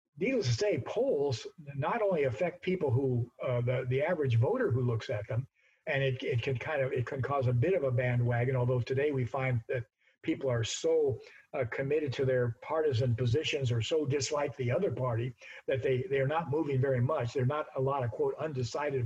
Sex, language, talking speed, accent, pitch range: male, English, 215 wpm, American, 120-145 Hz